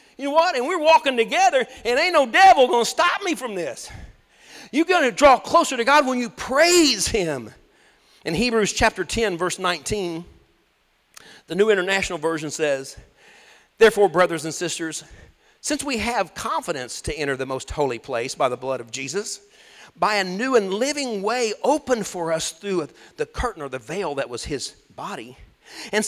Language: English